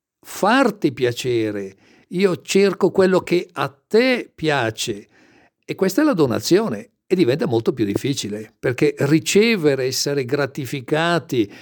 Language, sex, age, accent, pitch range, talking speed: Italian, male, 50-69, native, 130-170 Hz, 120 wpm